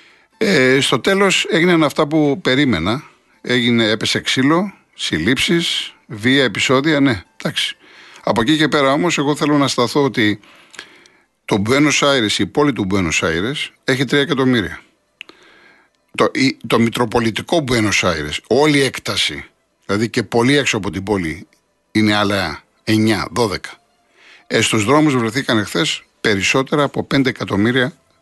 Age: 50-69